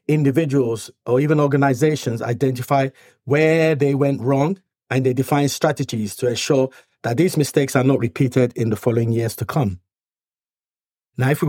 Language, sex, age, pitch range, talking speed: English, male, 50-69, 125-155 Hz, 155 wpm